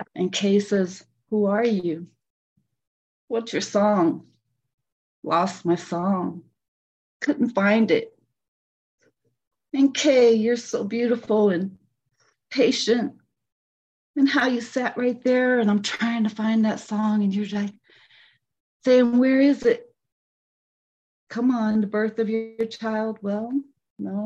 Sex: female